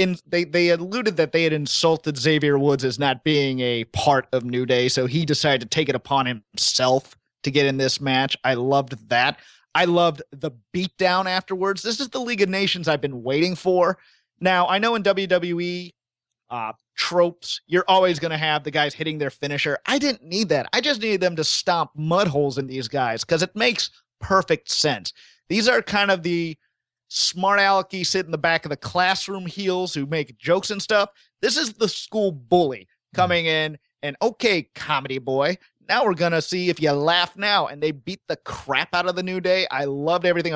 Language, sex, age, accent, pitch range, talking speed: English, male, 30-49, American, 140-185 Hz, 205 wpm